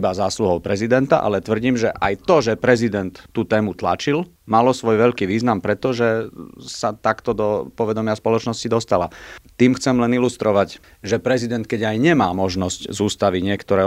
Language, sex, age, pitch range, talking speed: Slovak, male, 40-59, 100-125 Hz, 160 wpm